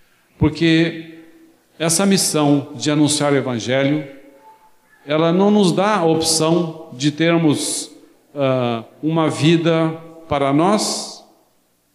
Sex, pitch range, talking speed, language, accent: male, 135-160 Hz, 95 wpm, Portuguese, Brazilian